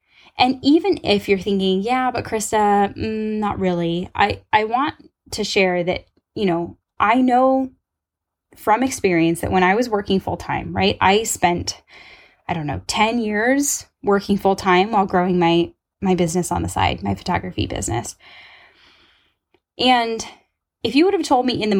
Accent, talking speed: American, 170 wpm